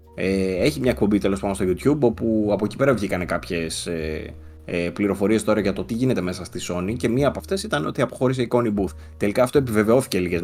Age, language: 20-39, Greek